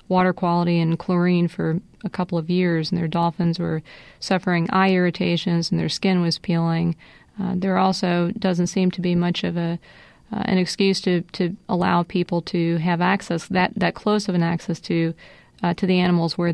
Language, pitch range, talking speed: English, 170-185 Hz, 190 wpm